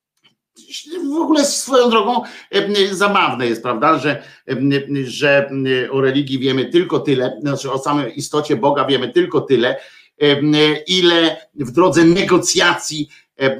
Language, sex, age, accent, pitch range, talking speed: Polish, male, 50-69, native, 145-205 Hz, 115 wpm